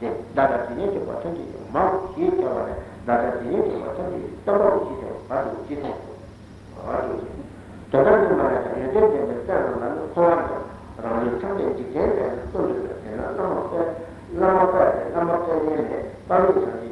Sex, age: male, 60-79